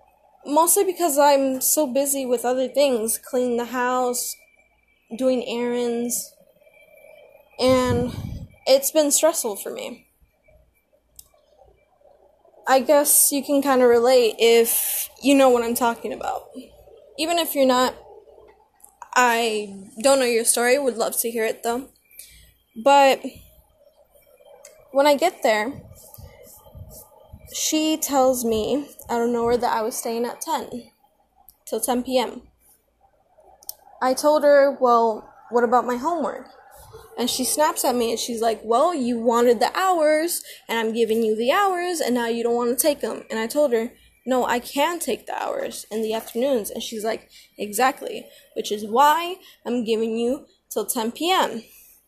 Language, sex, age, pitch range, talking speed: English, female, 10-29, 240-300 Hz, 150 wpm